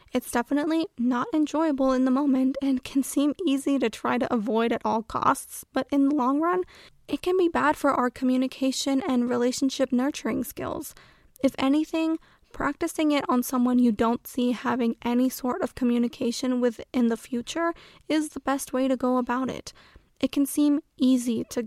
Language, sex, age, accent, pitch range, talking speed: English, female, 10-29, American, 245-280 Hz, 180 wpm